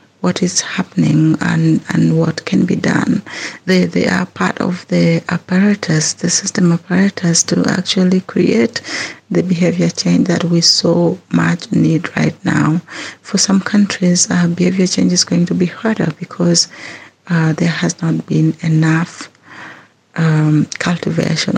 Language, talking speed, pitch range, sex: English, 145 wpm, 160-185 Hz, female